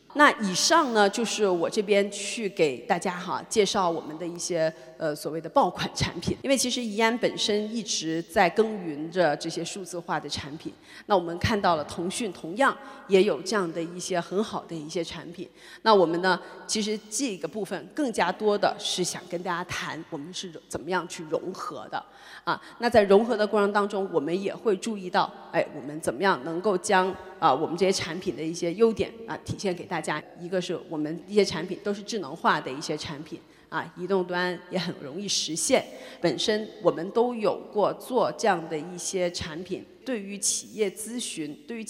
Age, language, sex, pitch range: 30-49, Chinese, female, 170-215 Hz